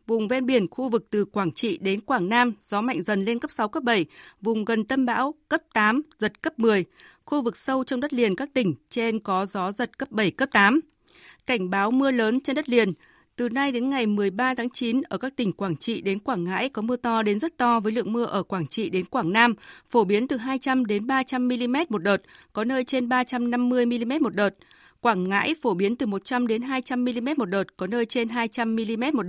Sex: female